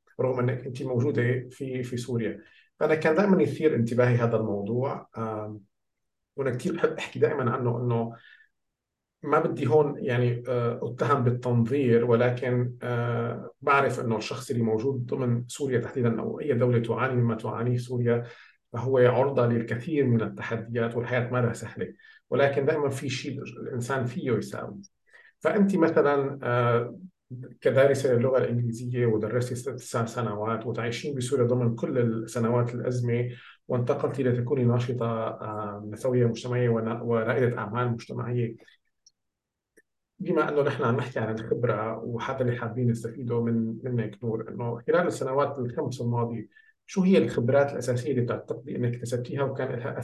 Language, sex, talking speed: Arabic, male, 135 wpm